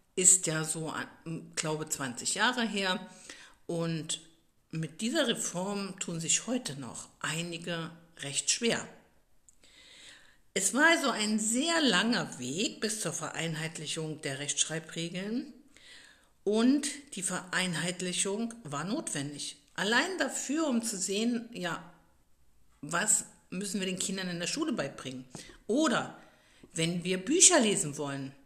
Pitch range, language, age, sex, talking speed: 165-235 Hz, German, 50-69, female, 120 wpm